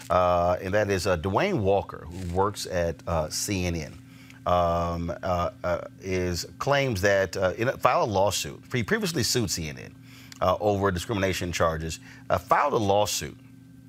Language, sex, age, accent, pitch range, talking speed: English, male, 40-59, American, 90-110 Hz, 155 wpm